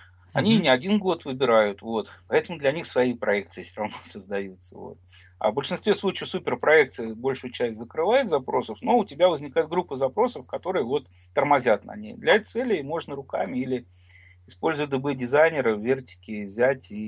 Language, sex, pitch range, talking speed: Russian, male, 100-145 Hz, 165 wpm